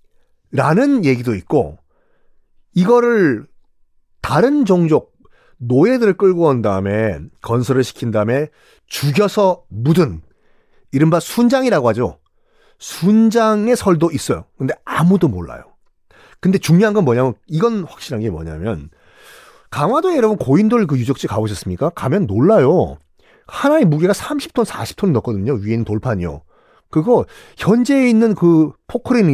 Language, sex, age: Korean, male, 40-59